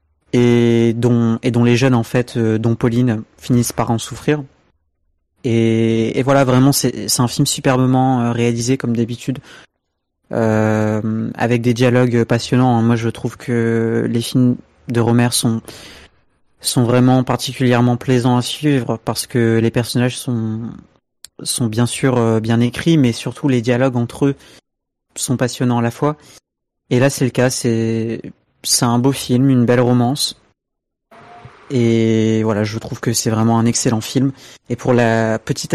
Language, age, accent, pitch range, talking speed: French, 30-49, French, 115-130 Hz, 160 wpm